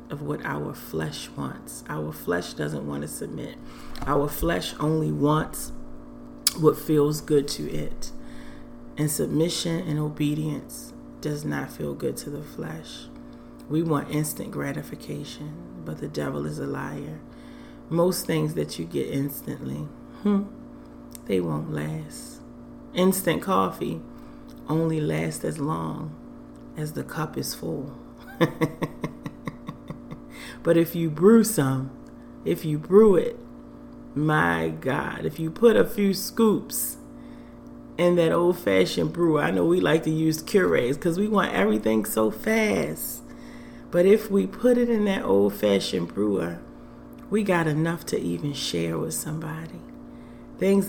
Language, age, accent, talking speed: English, 30-49, American, 135 wpm